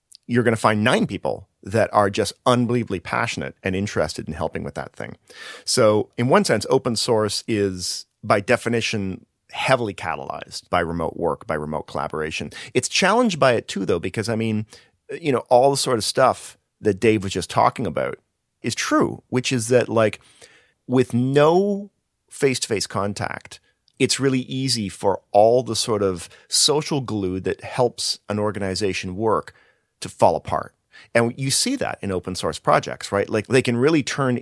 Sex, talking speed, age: male, 175 wpm, 40-59